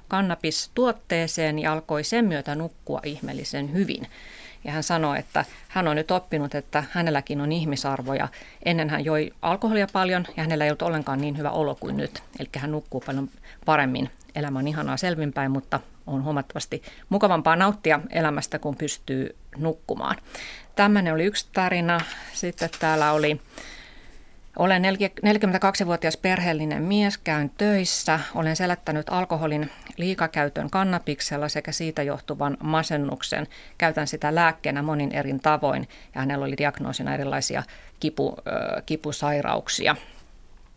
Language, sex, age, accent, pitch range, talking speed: Finnish, female, 30-49, native, 145-175 Hz, 130 wpm